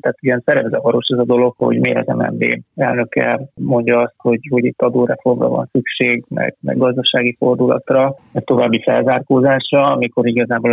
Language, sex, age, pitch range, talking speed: Hungarian, male, 30-49, 115-140 Hz, 170 wpm